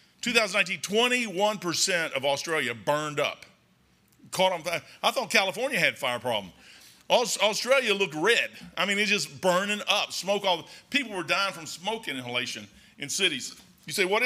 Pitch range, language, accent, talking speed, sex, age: 150-205 Hz, English, American, 165 wpm, male, 50-69